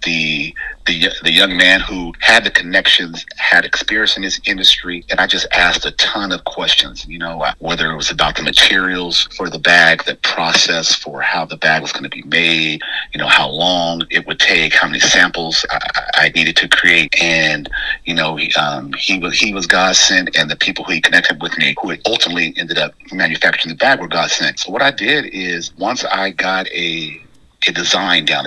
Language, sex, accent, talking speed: English, male, American, 210 wpm